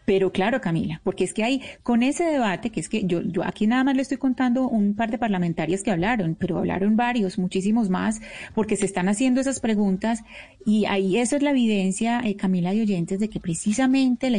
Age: 30-49